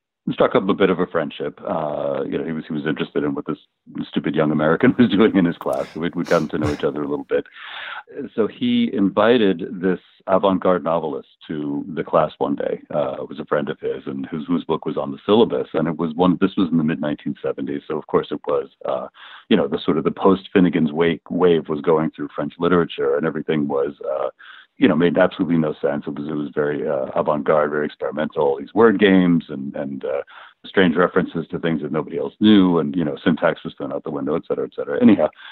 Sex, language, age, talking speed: male, English, 40-59, 235 wpm